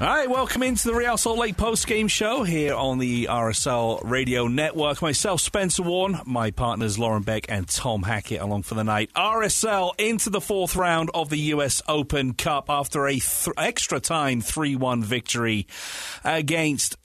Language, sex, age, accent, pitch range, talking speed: English, male, 40-59, British, 110-155 Hz, 165 wpm